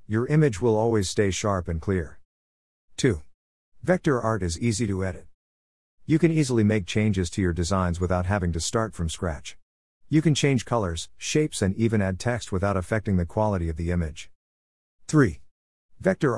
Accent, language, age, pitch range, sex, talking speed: American, English, 50-69, 85-115 Hz, male, 170 wpm